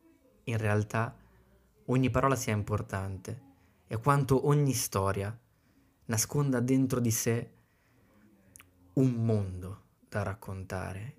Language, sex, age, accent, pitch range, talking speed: Italian, male, 20-39, native, 105-130 Hz, 95 wpm